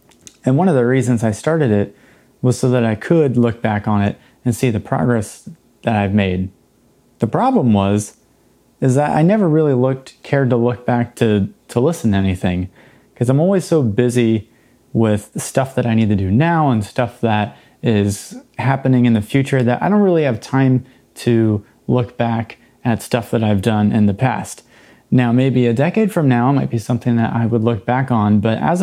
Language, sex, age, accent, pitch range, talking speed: English, male, 30-49, American, 110-135 Hz, 200 wpm